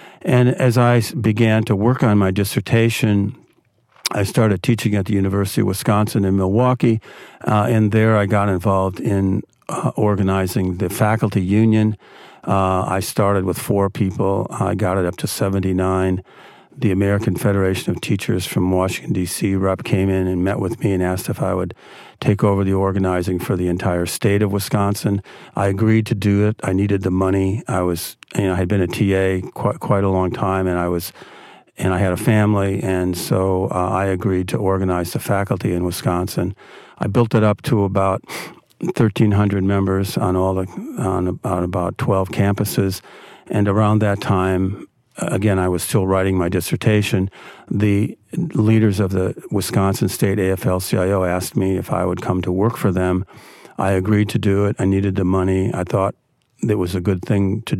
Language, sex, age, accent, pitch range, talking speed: English, male, 50-69, American, 95-105 Hz, 185 wpm